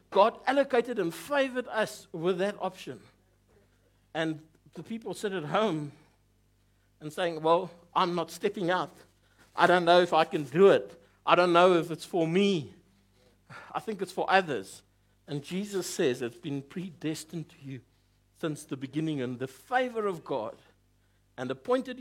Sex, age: male, 60-79